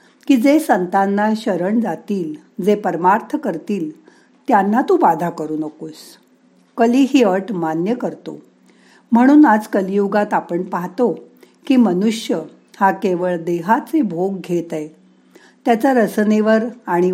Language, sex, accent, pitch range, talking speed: Marathi, female, native, 175-230 Hz, 120 wpm